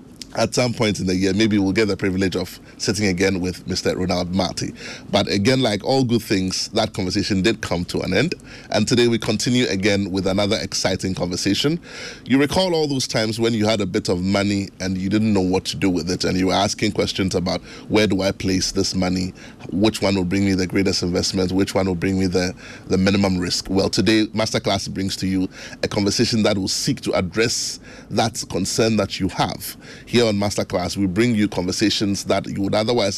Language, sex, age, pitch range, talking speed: English, male, 30-49, 95-110 Hz, 215 wpm